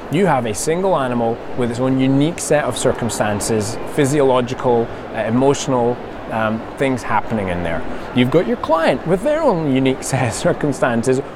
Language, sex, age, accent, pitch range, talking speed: English, male, 20-39, British, 115-145 Hz, 160 wpm